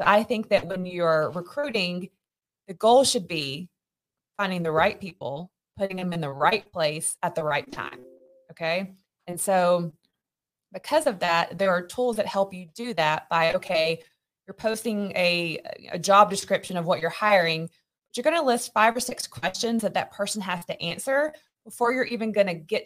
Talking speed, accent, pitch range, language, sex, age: 185 wpm, American, 175-225 Hz, English, female, 20-39